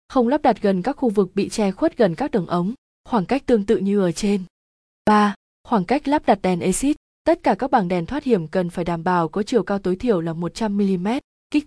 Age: 20-39